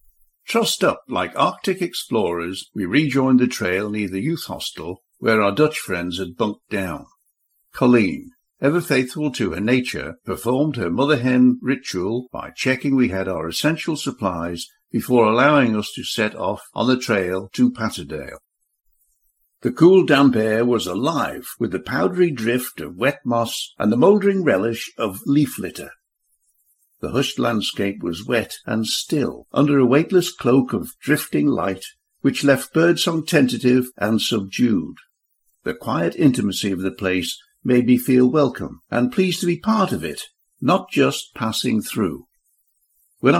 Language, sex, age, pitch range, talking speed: English, male, 60-79, 100-155 Hz, 155 wpm